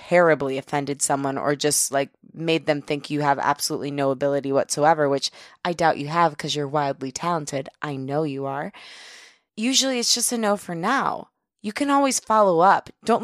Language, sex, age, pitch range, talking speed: English, female, 20-39, 150-185 Hz, 185 wpm